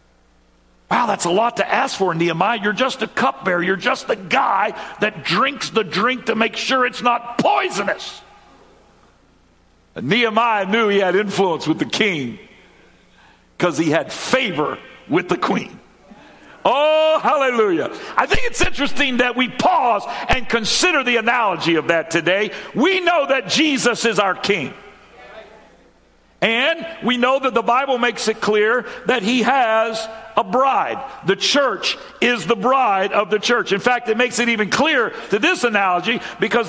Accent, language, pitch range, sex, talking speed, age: American, English, 210-280 Hz, male, 160 wpm, 60-79